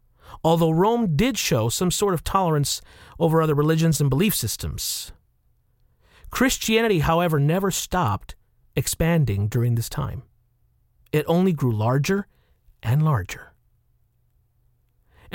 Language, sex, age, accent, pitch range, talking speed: English, male, 40-59, American, 115-170 Hz, 115 wpm